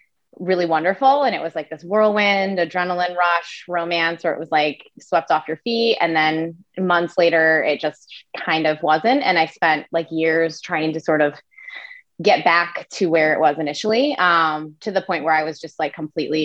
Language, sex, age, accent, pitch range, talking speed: English, female, 20-39, American, 155-175 Hz, 195 wpm